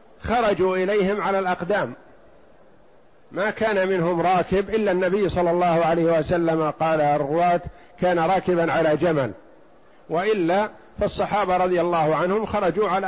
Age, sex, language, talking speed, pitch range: 50-69, male, Arabic, 125 wpm, 160-195 Hz